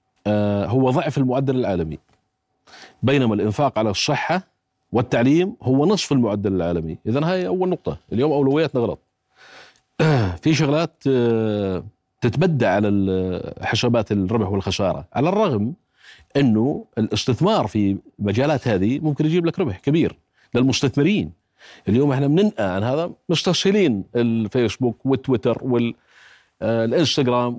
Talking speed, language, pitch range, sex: 110 wpm, Arabic, 110-150 Hz, male